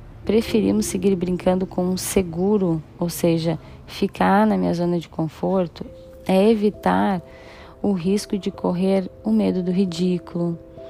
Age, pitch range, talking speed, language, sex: 10-29, 165-195 Hz, 130 wpm, Portuguese, female